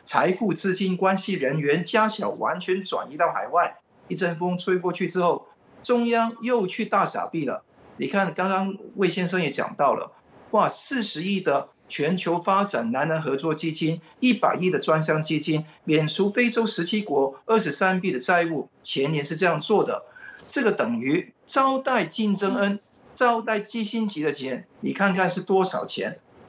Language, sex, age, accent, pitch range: Chinese, male, 50-69, native, 160-220 Hz